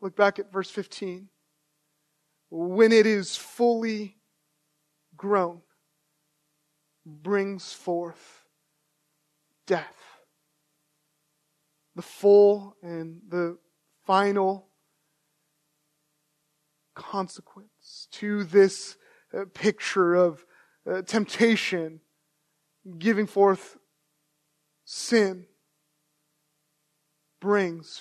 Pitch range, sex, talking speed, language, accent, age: 150-210 Hz, male, 65 wpm, English, American, 20-39